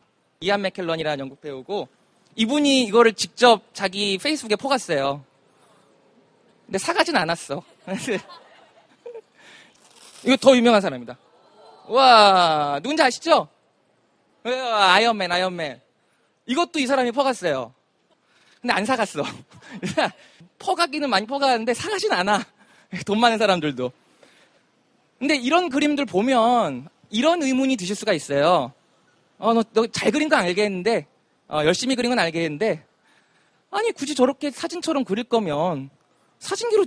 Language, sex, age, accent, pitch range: Korean, male, 20-39, native, 200-285 Hz